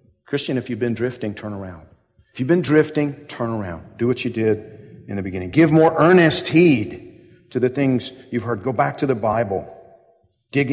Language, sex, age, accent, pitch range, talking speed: English, male, 50-69, American, 110-140 Hz, 195 wpm